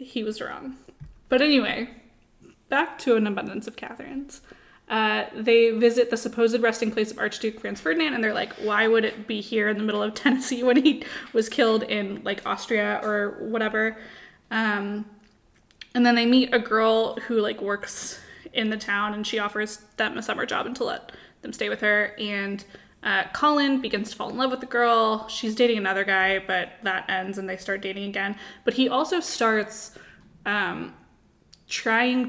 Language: English